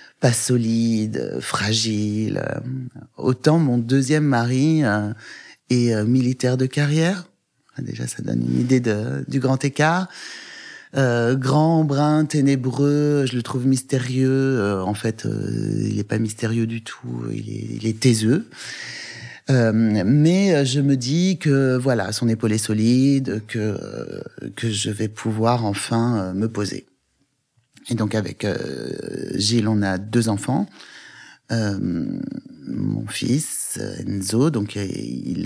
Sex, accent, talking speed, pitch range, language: male, French, 125 wpm, 110-140 Hz, French